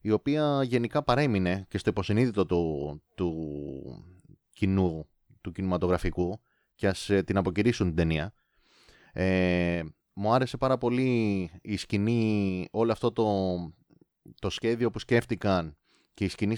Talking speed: 125 wpm